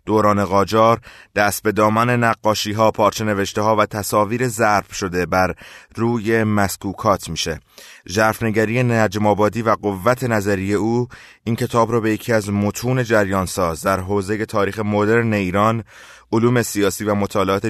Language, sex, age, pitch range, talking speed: Persian, male, 30-49, 95-115 Hz, 140 wpm